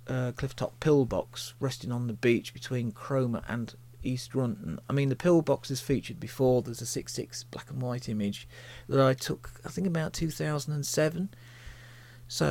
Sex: male